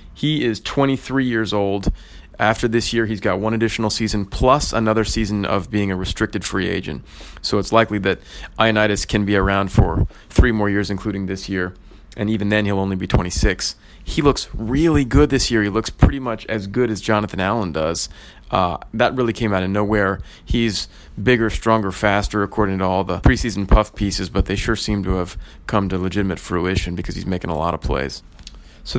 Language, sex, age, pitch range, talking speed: English, male, 30-49, 95-115 Hz, 200 wpm